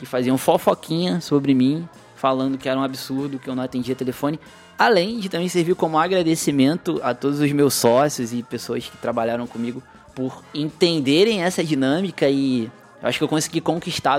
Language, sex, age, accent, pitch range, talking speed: Portuguese, male, 20-39, Brazilian, 130-185 Hz, 175 wpm